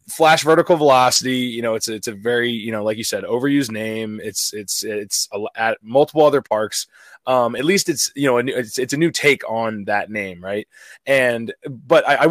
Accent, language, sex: American, English, male